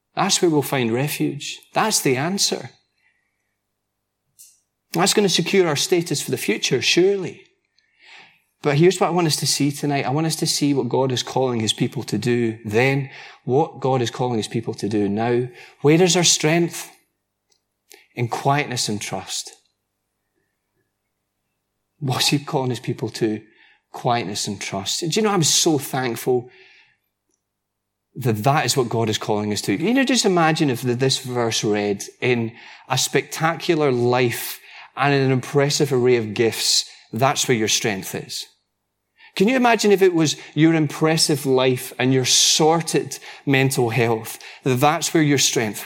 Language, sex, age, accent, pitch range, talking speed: English, male, 30-49, British, 110-160 Hz, 160 wpm